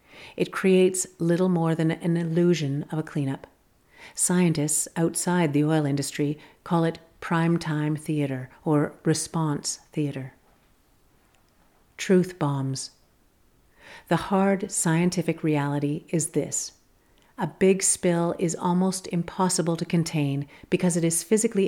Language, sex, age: English, female, 50-69